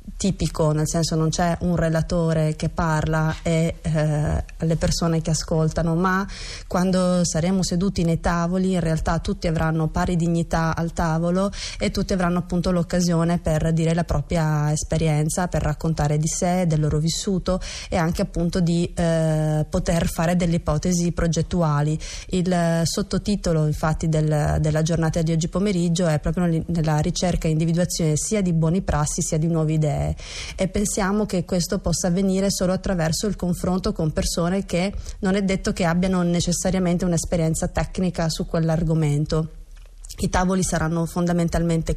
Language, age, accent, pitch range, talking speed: Italian, 30-49, native, 160-180 Hz, 155 wpm